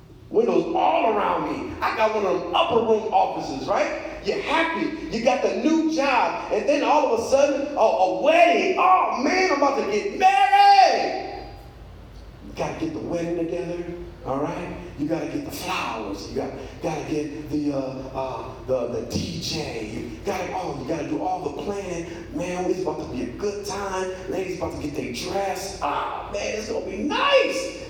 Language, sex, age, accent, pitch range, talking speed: English, male, 30-49, American, 200-325 Hz, 190 wpm